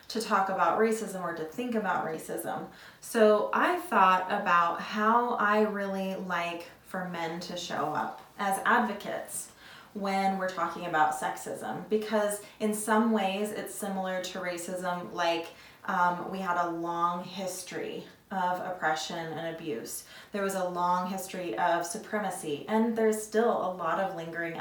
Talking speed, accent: 150 wpm, American